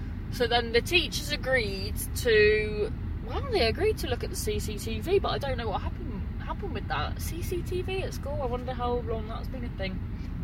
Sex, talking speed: female, 205 wpm